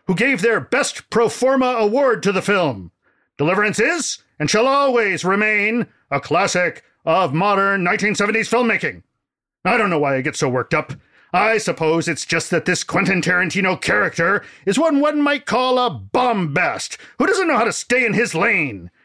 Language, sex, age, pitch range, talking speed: English, male, 40-59, 185-245 Hz, 175 wpm